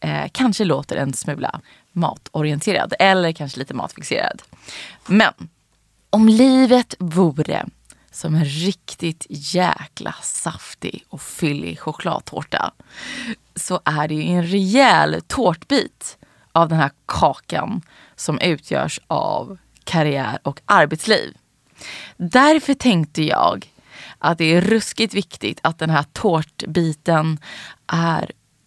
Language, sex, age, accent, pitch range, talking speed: English, female, 20-39, Swedish, 155-200 Hz, 110 wpm